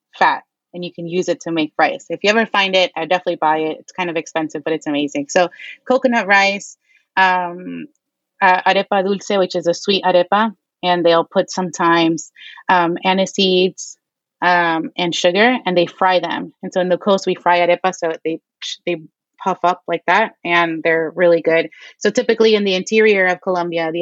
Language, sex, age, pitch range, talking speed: English, female, 30-49, 170-195 Hz, 195 wpm